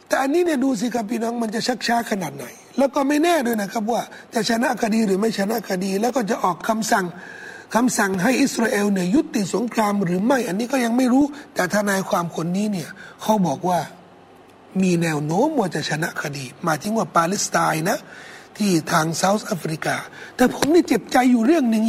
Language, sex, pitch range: Thai, male, 205-300 Hz